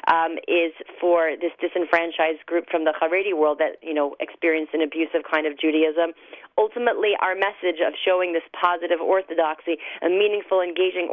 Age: 30-49